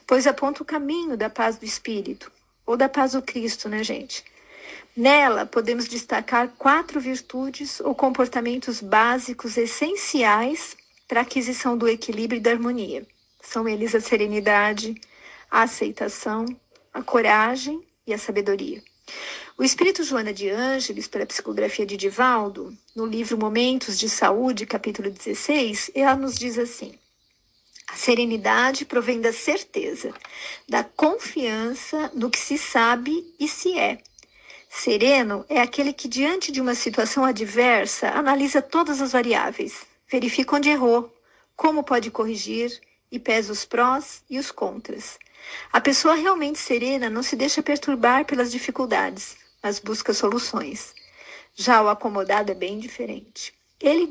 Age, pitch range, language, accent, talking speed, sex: 40-59, 225-285 Hz, Portuguese, Brazilian, 135 wpm, female